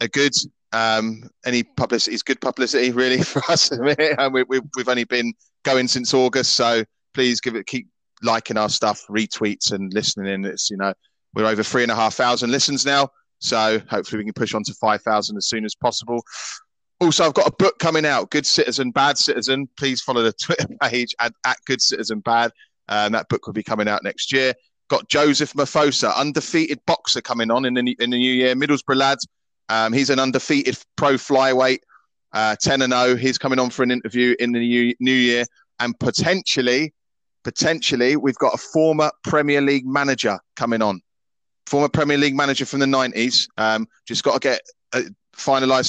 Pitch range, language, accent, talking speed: 115-140 Hz, English, British, 190 wpm